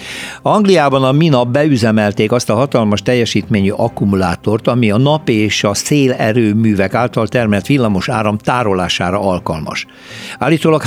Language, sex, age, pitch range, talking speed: Hungarian, male, 60-79, 100-130 Hz, 120 wpm